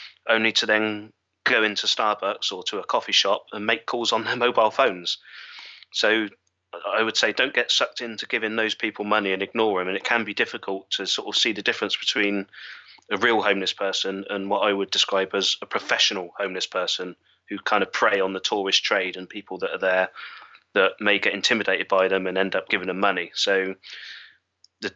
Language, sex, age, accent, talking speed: English, male, 20-39, British, 205 wpm